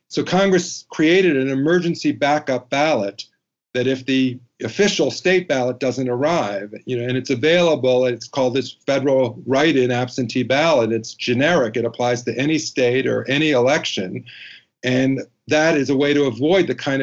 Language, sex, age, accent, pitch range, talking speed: English, male, 50-69, American, 125-155 Hz, 165 wpm